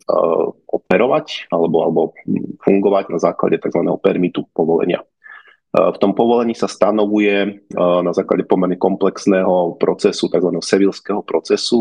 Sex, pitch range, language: male, 90-105 Hz, Slovak